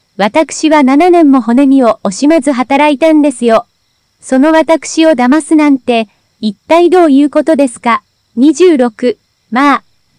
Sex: female